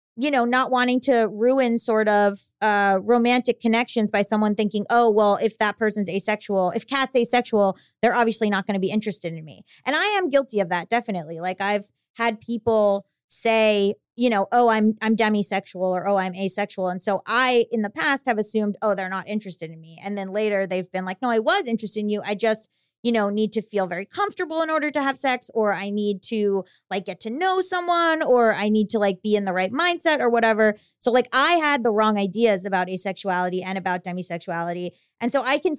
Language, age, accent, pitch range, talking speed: English, 30-49, American, 200-260 Hz, 220 wpm